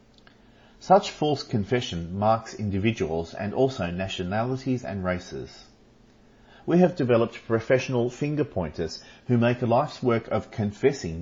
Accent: Australian